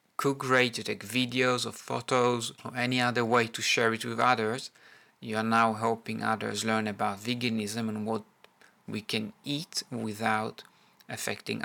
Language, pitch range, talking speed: English, 110-130 Hz, 160 wpm